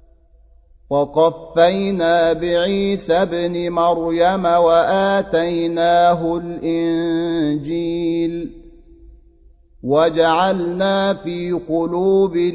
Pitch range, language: 165-175 Hz, Arabic